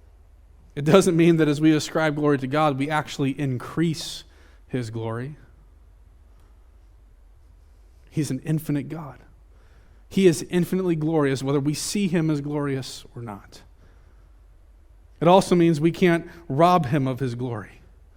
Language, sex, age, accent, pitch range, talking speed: English, male, 30-49, American, 130-210 Hz, 135 wpm